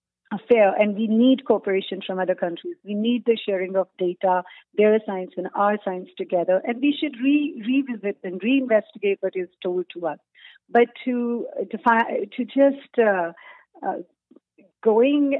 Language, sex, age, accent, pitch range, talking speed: English, female, 50-69, Indian, 195-245 Hz, 170 wpm